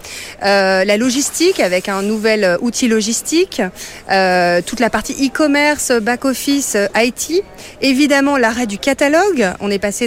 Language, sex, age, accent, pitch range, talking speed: French, female, 40-59, French, 215-275 Hz, 130 wpm